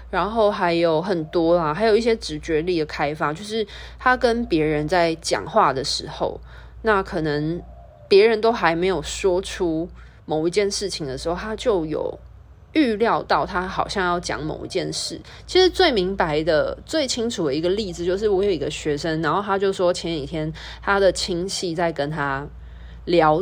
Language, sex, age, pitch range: Chinese, female, 20-39, 160-225 Hz